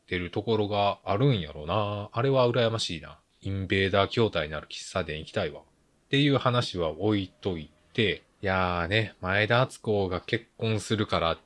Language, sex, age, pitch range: Japanese, male, 20-39, 85-120 Hz